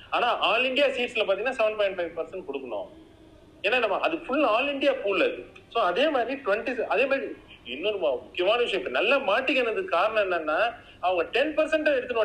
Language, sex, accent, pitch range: Tamil, male, native, 175-290 Hz